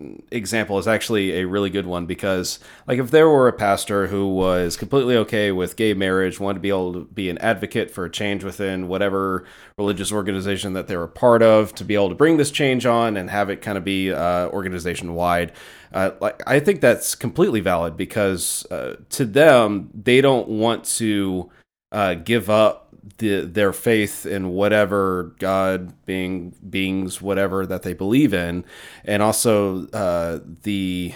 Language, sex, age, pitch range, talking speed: English, male, 30-49, 90-110 Hz, 175 wpm